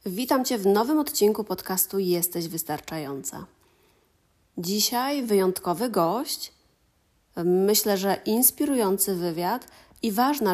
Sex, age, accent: female, 30-49, native